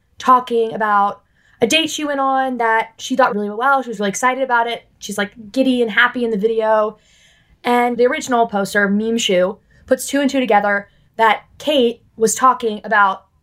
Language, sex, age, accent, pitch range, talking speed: English, female, 20-39, American, 210-250 Hz, 190 wpm